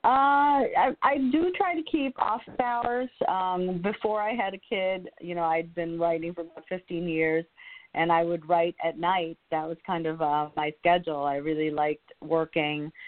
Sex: female